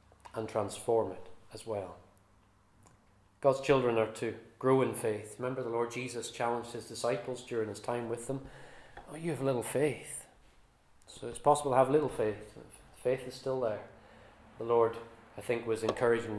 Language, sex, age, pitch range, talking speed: English, male, 30-49, 110-135 Hz, 170 wpm